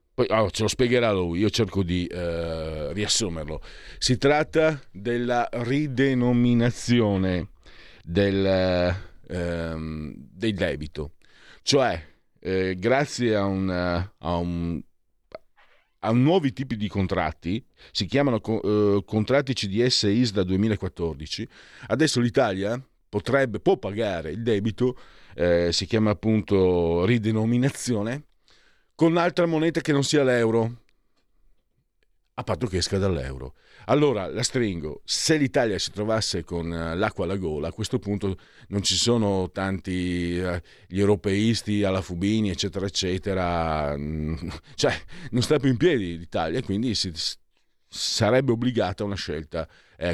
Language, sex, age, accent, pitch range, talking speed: Italian, male, 40-59, native, 85-120 Hz, 125 wpm